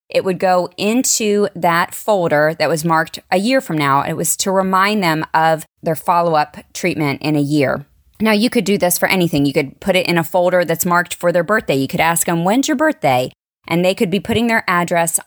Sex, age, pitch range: female, 20-39, 160-200 Hz